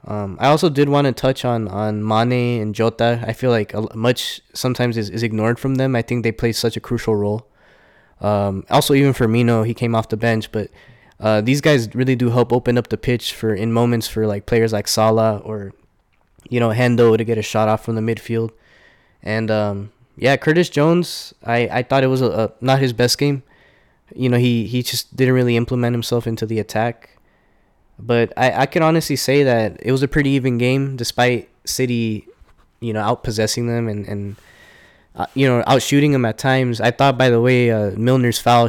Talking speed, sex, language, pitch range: 210 wpm, male, English, 110-125 Hz